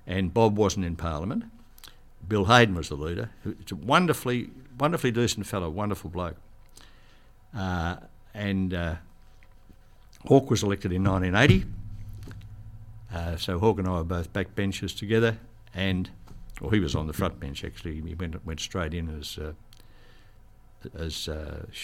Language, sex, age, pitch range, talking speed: English, male, 60-79, 90-110 Hz, 150 wpm